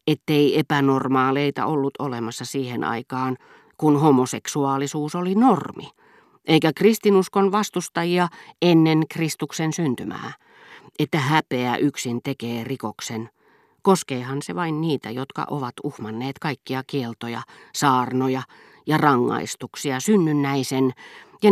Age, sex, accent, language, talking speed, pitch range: 40-59, female, native, Finnish, 100 wpm, 125-160 Hz